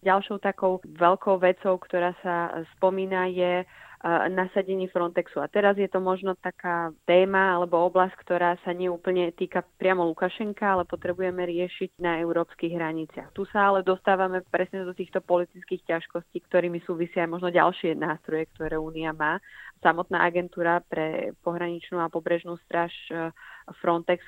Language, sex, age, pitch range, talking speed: Slovak, female, 20-39, 165-190 Hz, 140 wpm